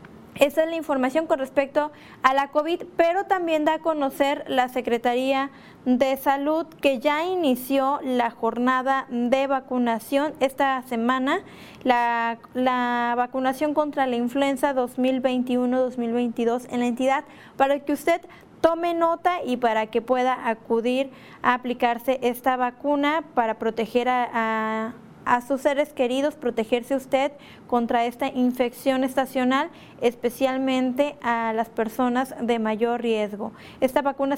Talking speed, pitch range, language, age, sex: 130 wpm, 240-275 Hz, Spanish, 20-39, female